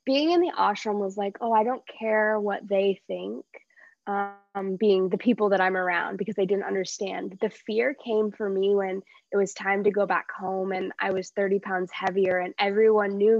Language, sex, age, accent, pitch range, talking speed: English, female, 20-39, American, 195-220 Hz, 205 wpm